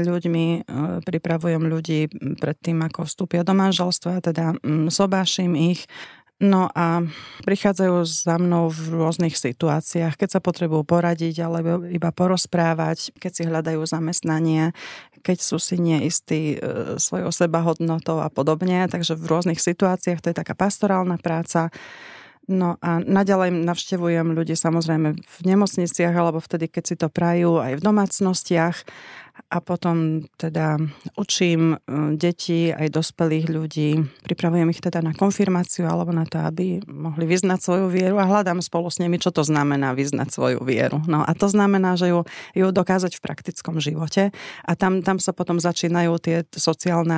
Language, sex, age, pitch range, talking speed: Slovak, female, 30-49, 160-180 Hz, 150 wpm